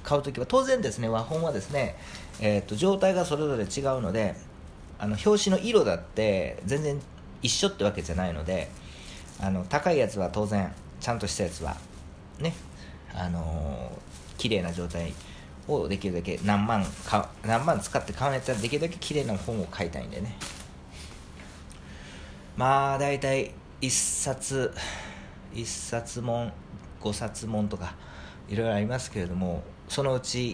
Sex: male